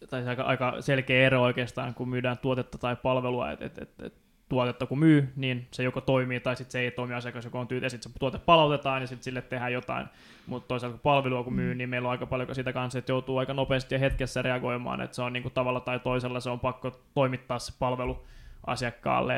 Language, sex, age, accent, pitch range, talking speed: Finnish, male, 20-39, native, 125-135 Hz, 215 wpm